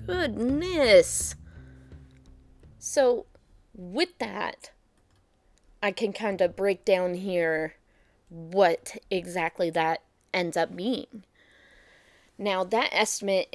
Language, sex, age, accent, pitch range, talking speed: English, female, 20-39, American, 170-215 Hz, 90 wpm